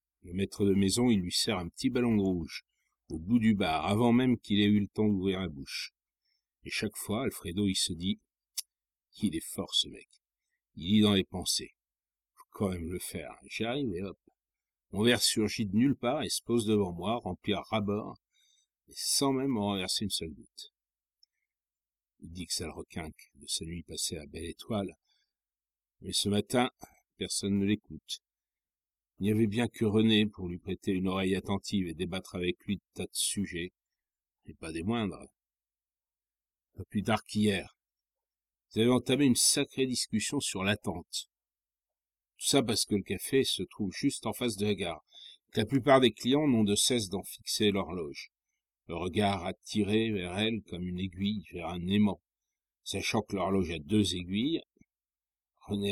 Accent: French